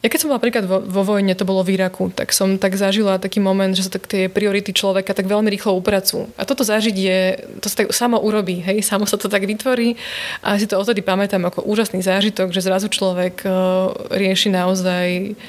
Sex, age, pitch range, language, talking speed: female, 20-39, 190-210 Hz, Slovak, 205 wpm